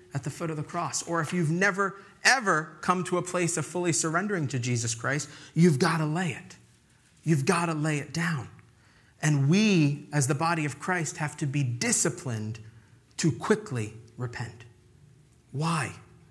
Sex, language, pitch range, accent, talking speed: male, English, 135-180 Hz, American, 175 wpm